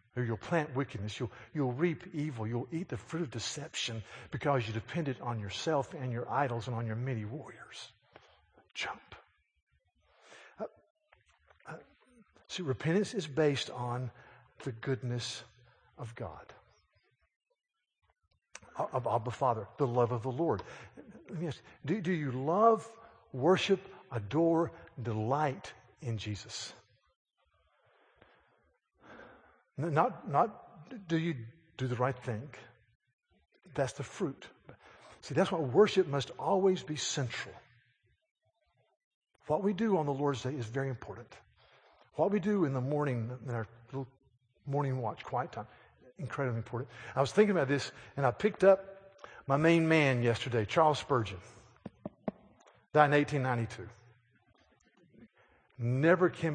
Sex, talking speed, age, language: male, 130 wpm, 50-69, English